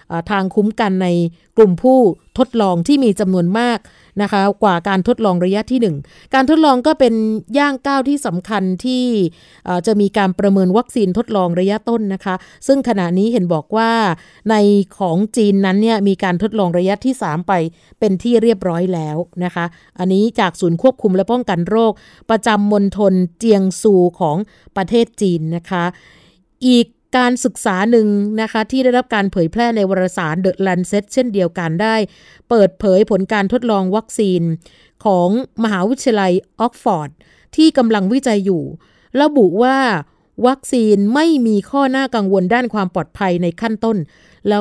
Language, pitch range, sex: Thai, 185-230 Hz, female